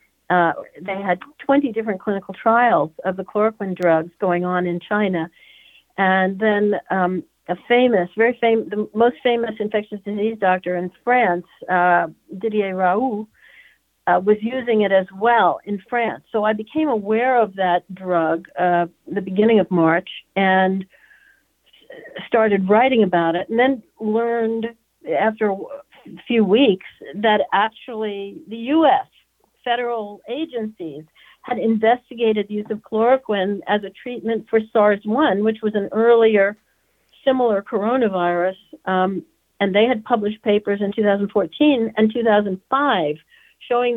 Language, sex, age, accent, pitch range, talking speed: English, female, 60-79, American, 190-235 Hz, 135 wpm